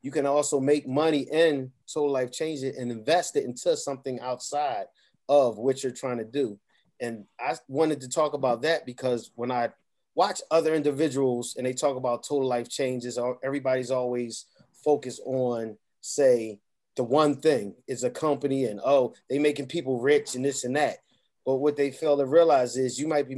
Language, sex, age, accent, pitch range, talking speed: English, male, 30-49, American, 125-155 Hz, 185 wpm